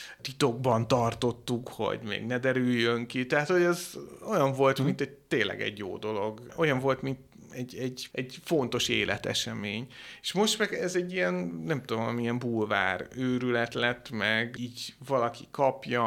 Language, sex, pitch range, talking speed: Hungarian, male, 110-130 Hz, 155 wpm